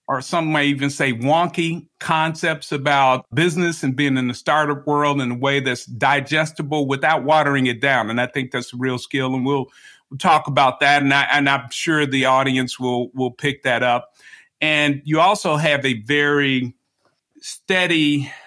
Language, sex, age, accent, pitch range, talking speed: English, male, 50-69, American, 130-155 Hz, 180 wpm